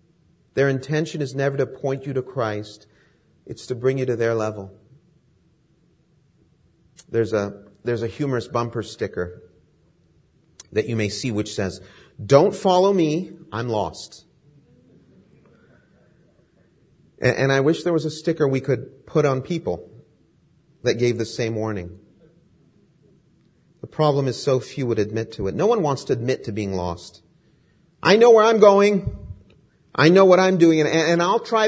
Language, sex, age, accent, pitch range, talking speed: English, male, 40-59, American, 110-160 Hz, 150 wpm